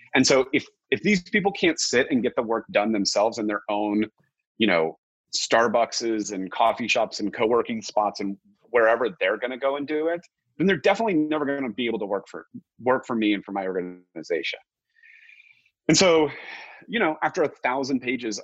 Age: 30-49